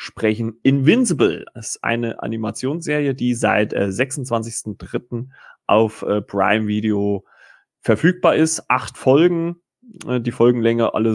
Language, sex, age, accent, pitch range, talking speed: German, male, 30-49, German, 105-135 Hz, 115 wpm